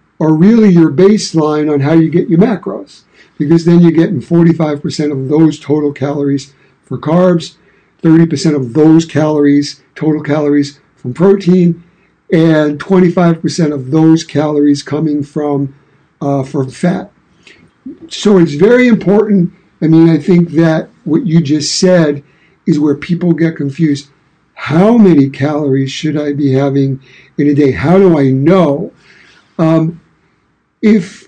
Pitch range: 145-170 Hz